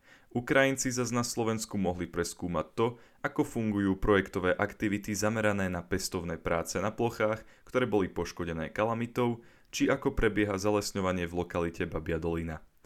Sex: male